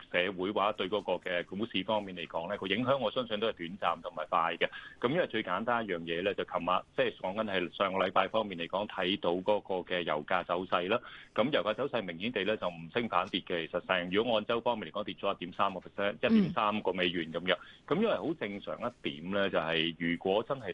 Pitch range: 85-100 Hz